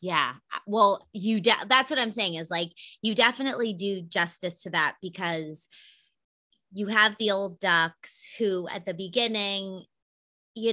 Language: English